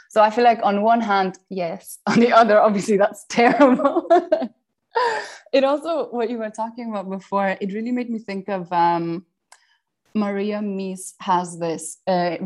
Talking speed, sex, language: 165 wpm, female, English